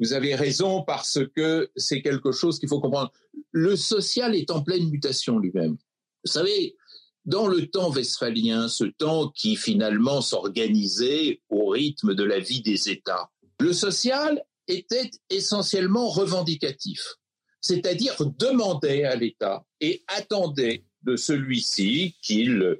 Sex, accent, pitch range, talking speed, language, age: male, French, 135-215 Hz, 130 wpm, English, 60-79